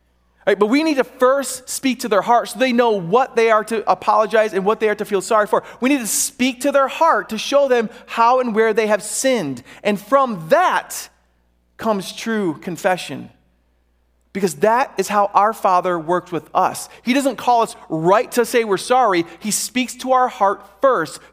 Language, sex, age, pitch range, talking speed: English, male, 30-49, 150-220 Hz, 205 wpm